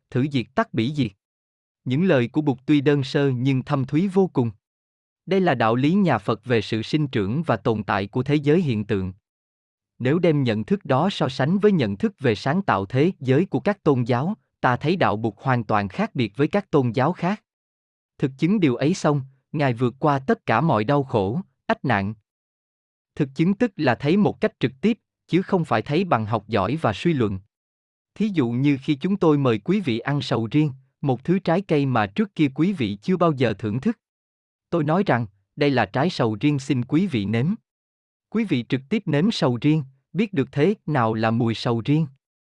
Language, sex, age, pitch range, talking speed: Vietnamese, male, 20-39, 115-165 Hz, 220 wpm